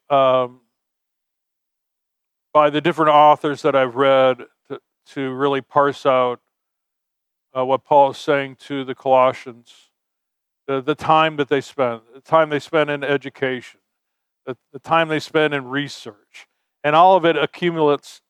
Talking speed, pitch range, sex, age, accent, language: 150 wpm, 135-170 Hz, male, 50-69, American, English